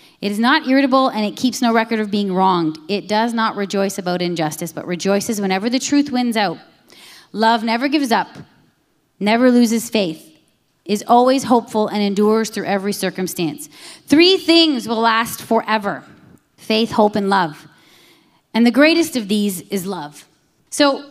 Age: 30-49